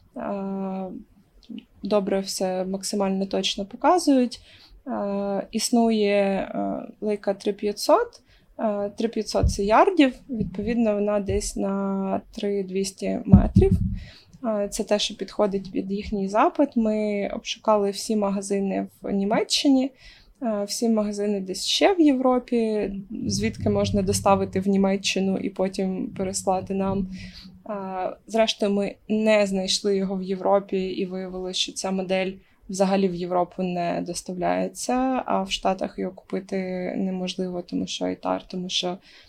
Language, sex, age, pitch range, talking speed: Ukrainian, female, 20-39, 185-210 Hz, 115 wpm